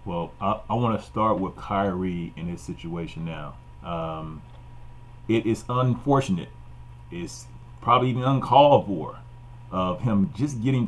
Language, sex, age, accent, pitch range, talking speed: English, male, 30-49, American, 95-125 Hz, 140 wpm